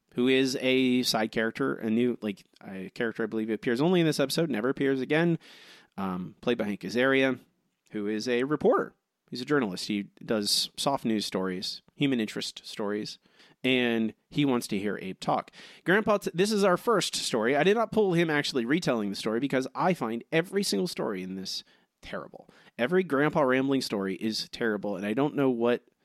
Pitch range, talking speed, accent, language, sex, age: 110-150 Hz, 190 wpm, American, English, male, 30-49